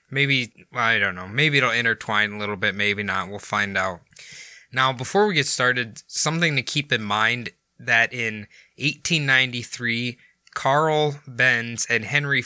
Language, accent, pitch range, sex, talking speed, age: English, American, 110-130 Hz, male, 155 wpm, 20-39